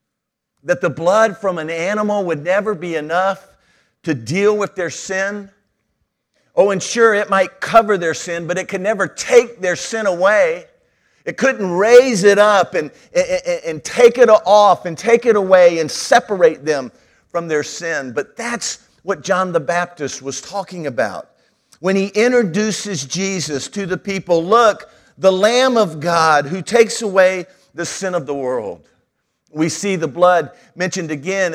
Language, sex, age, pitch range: English, male, 50-69, 170-210 Hz